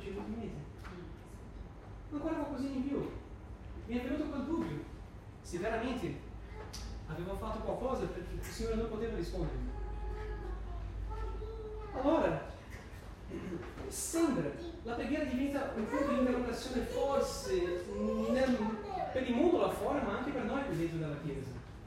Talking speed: 125 wpm